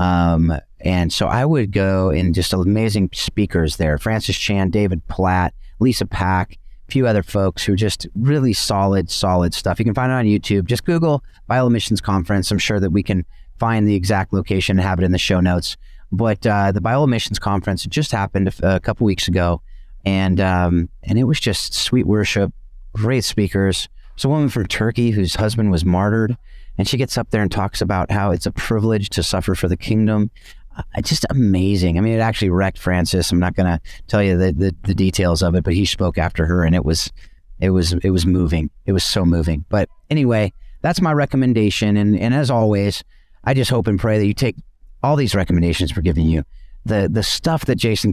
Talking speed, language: 210 wpm, English